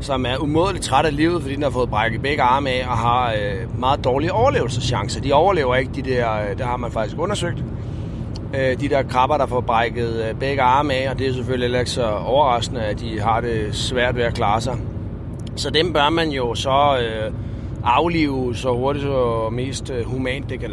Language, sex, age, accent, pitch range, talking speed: Danish, male, 30-49, native, 115-140 Hz, 195 wpm